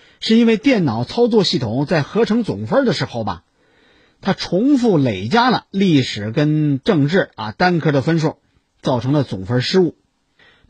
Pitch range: 125-185 Hz